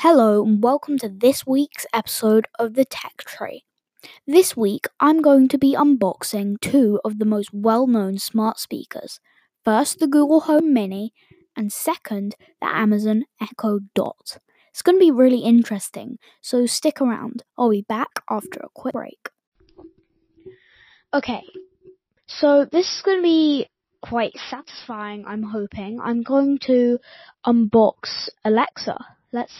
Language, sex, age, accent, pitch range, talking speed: English, female, 10-29, British, 215-285 Hz, 140 wpm